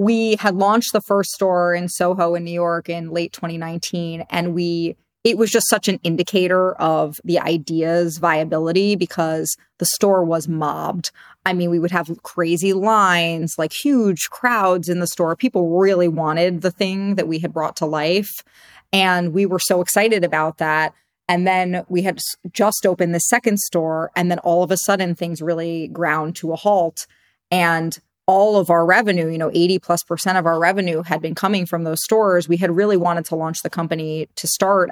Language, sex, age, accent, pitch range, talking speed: English, female, 30-49, American, 165-190 Hz, 190 wpm